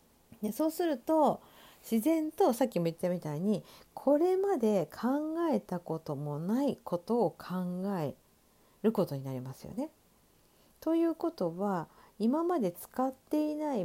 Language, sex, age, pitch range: Japanese, female, 50-69, 170-275 Hz